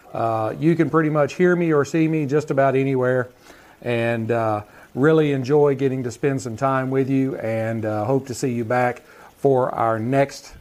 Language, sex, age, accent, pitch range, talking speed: English, male, 40-59, American, 125-150 Hz, 190 wpm